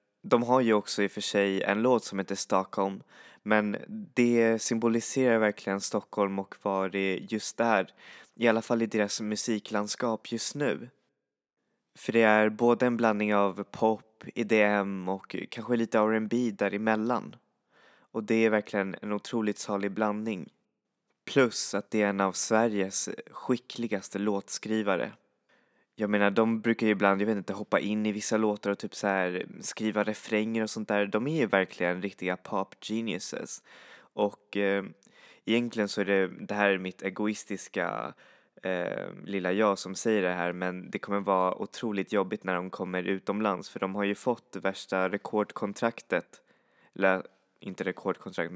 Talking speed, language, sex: 160 wpm, Swedish, male